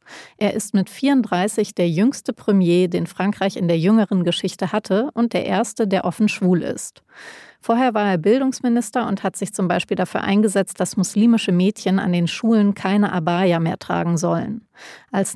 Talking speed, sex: 170 wpm, female